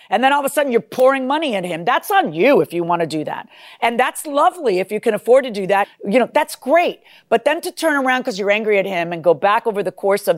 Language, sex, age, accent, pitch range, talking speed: English, female, 50-69, American, 185-255 Hz, 295 wpm